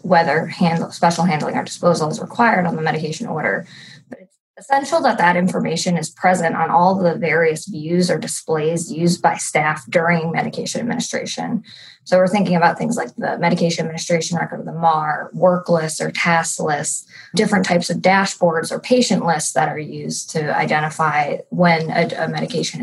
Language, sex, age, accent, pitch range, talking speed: English, female, 20-39, American, 165-185 Hz, 170 wpm